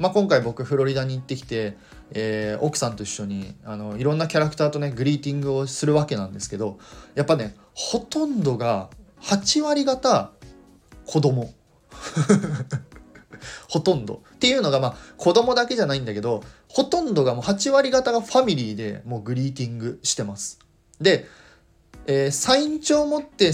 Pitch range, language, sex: 115-165 Hz, Japanese, male